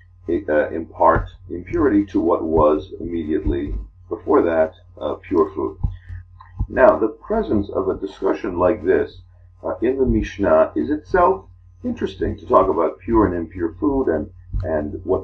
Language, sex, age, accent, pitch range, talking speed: English, male, 50-69, American, 90-115 Hz, 150 wpm